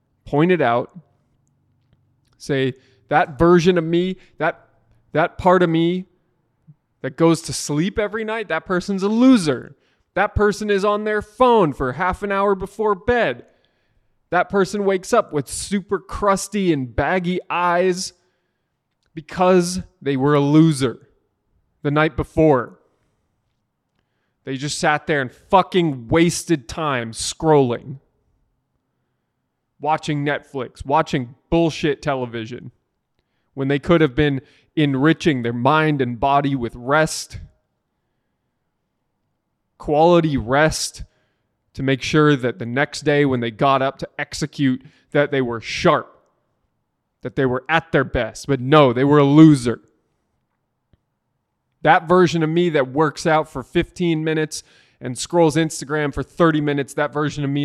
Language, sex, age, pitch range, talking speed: English, male, 20-39, 135-175 Hz, 135 wpm